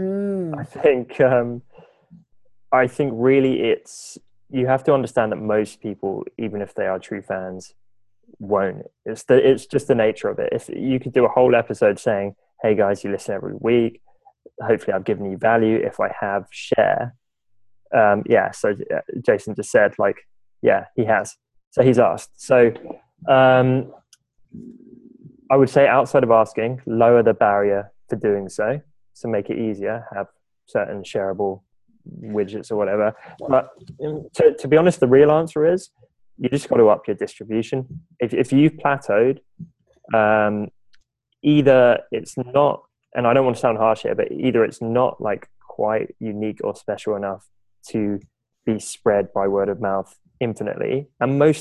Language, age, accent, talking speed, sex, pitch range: English, 20-39, British, 165 wpm, male, 105-140 Hz